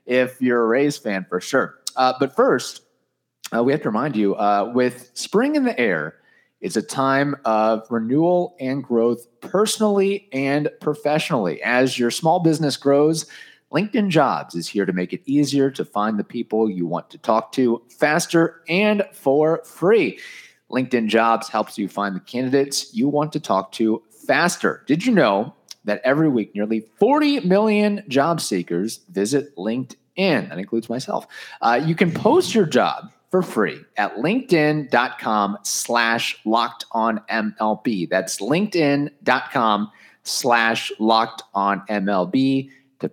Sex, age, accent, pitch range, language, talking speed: male, 30-49, American, 110-150 Hz, English, 150 wpm